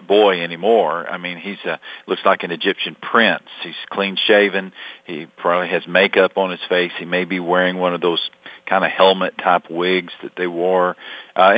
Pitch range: 95-115 Hz